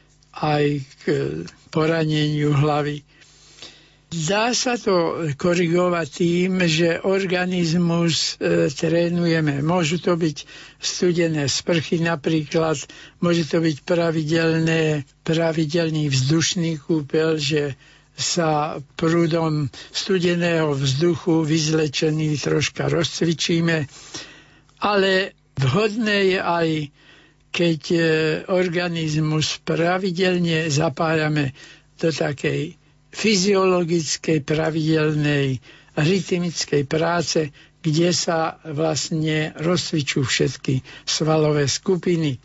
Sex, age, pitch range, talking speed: male, 60-79, 150-170 Hz, 75 wpm